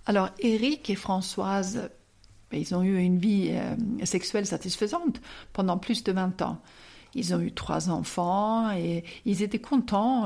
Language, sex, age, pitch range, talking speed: French, female, 50-69, 175-215 Hz, 160 wpm